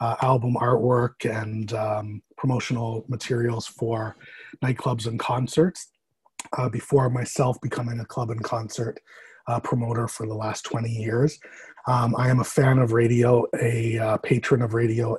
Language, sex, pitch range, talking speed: English, male, 115-125 Hz, 150 wpm